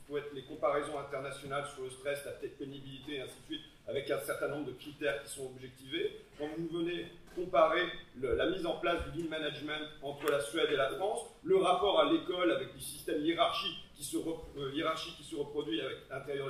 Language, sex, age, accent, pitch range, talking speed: French, male, 40-59, French, 145-220 Hz, 205 wpm